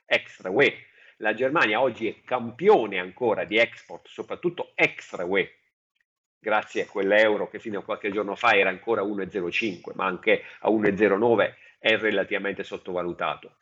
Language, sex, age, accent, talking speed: Italian, male, 50-69, native, 140 wpm